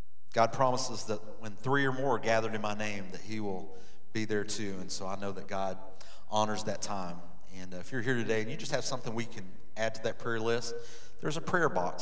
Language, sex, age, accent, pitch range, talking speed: English, male, 30-49, American, 100-120 Hz, 245 wpm